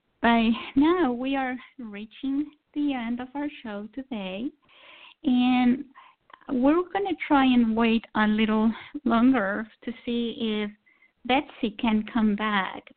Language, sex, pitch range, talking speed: English, female, 215-270 Hz, 130 wpm